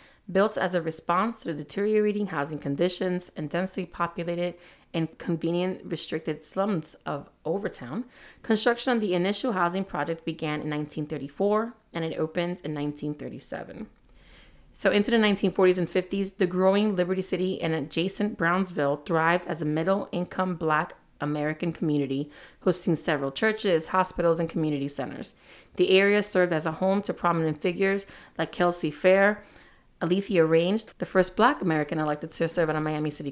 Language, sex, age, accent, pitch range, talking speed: English, female, 30-49, American, 155-190 Hz, 150 wpm